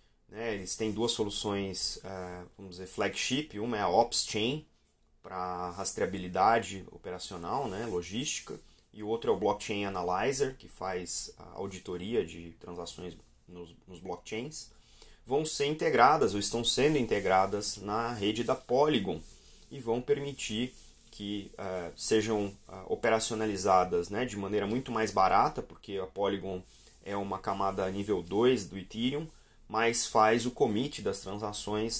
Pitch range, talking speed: 100-120 Hz, 135 wpm